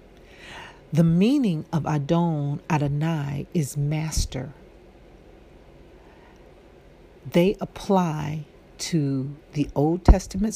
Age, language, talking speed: 50-69, English, 75 wpm